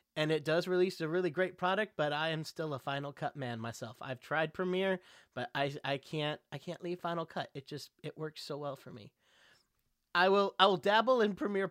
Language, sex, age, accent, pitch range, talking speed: English, male, 30-49, American, 130-175 Hz, 225 wpm